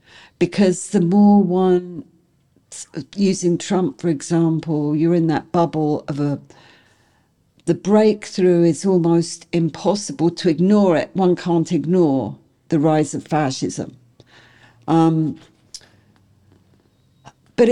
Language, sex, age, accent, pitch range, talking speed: Dutch, female, 60-79, British, 155-200 Hz, 105 wpm